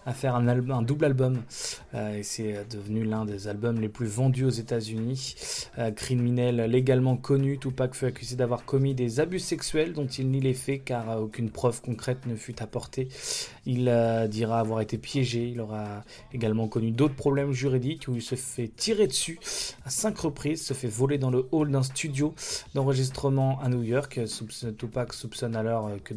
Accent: French